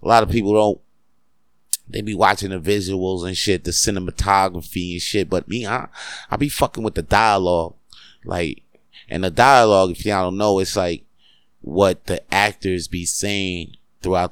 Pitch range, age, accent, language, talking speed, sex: 85-105 Hz, 20-39, American, English, 170 wpm, male